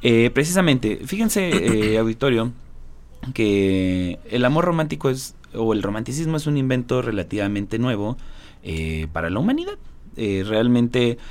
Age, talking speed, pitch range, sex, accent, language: 30-49, 125 wpm, 100-140 Hz, male, Mexican, Spanish